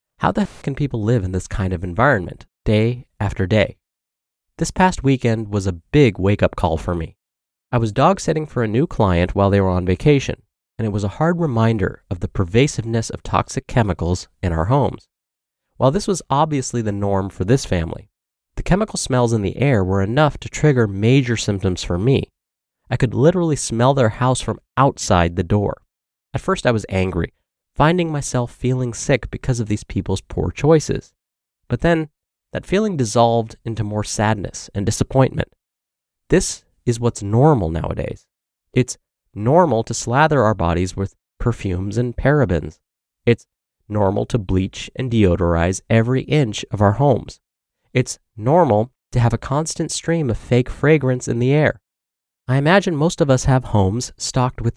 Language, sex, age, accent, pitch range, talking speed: English, male, 30-49, American, 100-135 Hz, 170 wpm